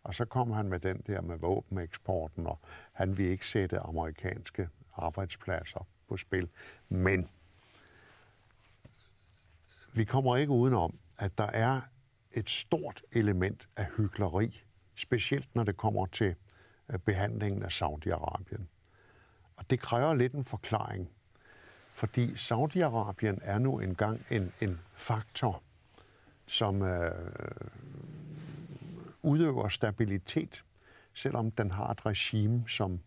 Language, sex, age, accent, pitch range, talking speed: Danish, male, 60-79, native, 95-120 Hz, 115 wpm